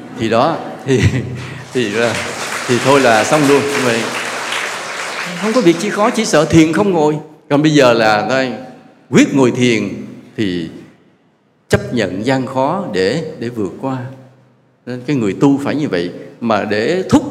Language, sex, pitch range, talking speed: English, male, 120-180 Hz, 165 wpm